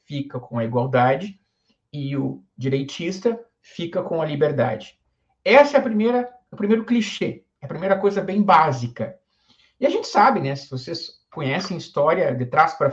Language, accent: Portuguese, Brazilian